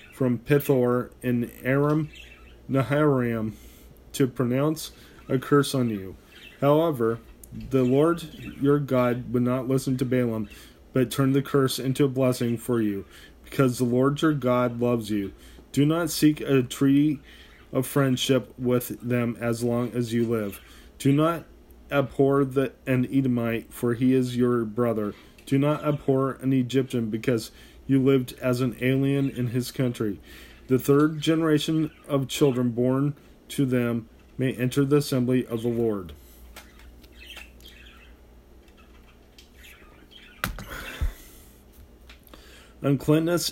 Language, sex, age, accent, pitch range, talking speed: English, male, 30-49, American, 110-140 Hz, 125 wpm